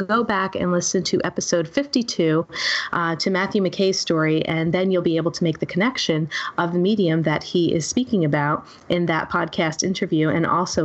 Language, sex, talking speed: English, female, 195 wpm